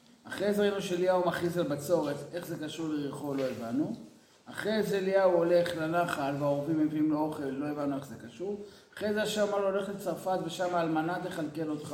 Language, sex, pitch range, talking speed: Hebrew, male, 170-225 Hz, 190 wpm